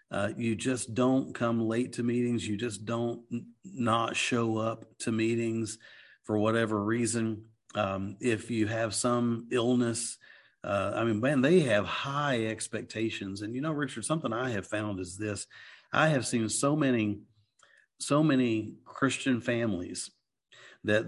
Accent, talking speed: American, 155 wpm